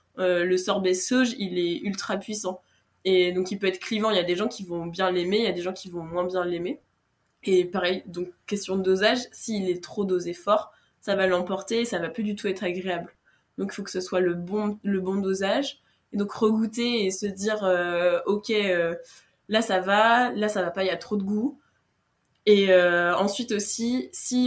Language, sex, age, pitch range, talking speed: French, female, 20-39, 185-215 Hz, 230 wpm